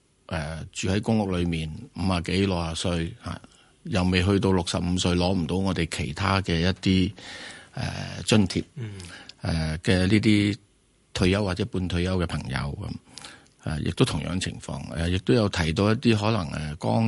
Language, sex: Chinese, male